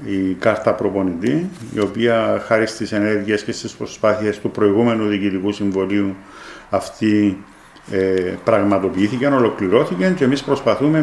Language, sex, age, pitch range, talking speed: Greek, male, 50-69, 100-130 Hz, 120 wpm